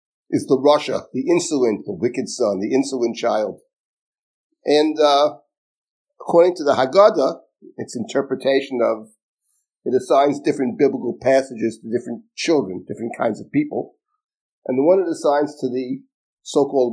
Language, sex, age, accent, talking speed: English, male, 50-69, American, 140 wpm